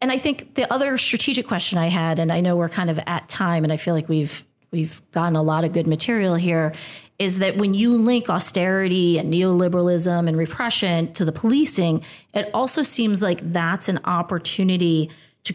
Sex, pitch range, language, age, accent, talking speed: female, 155-190 Hz, English, 30-49, American, 195 wpm